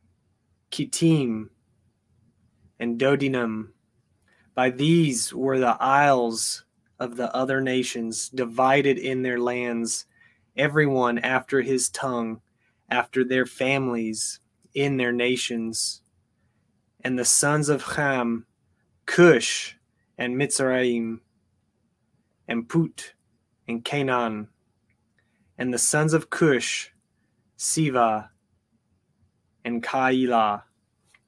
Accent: American